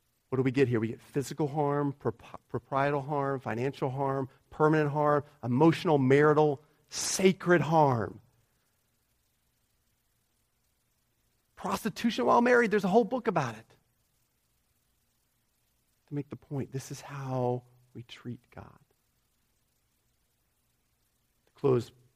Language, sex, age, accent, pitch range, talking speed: English, male, 40-59, American, 110-135 Hz, 105 wpm